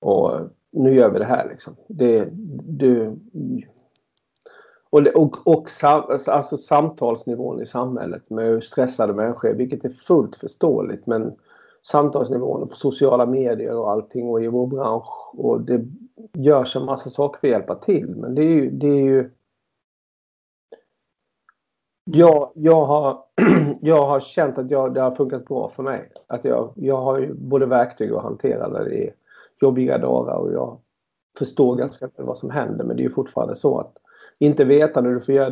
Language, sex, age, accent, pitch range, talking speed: Swedish, male, 50-69, native, 125-150 Hz, 165 wpm